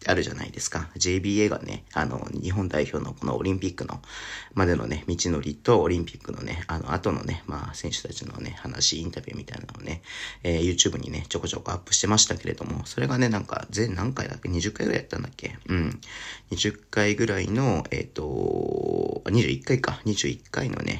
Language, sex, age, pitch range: Japanese, male, 40-59, 85-115 Hz